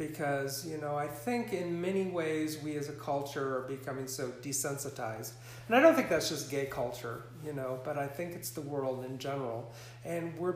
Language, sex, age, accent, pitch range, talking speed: English, male, 40-59, American, 125-165 Hz, 205 wpm